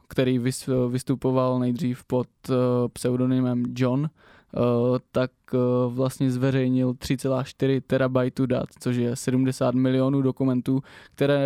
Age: 20-39